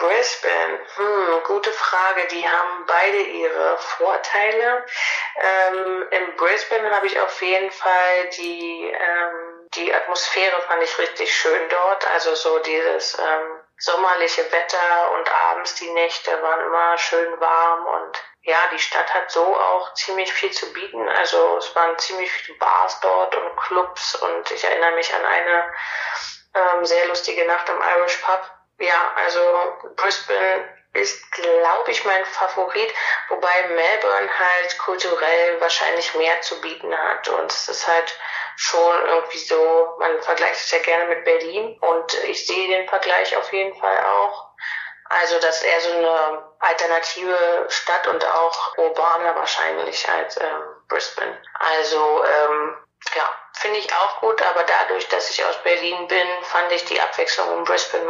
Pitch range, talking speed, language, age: 165-195 Hz, 150 wpm, German, 30-49